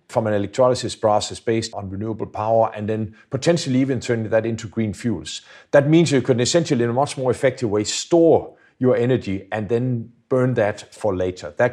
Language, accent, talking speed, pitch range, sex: English, Danish, 195 wpm, 110-135 Hz, male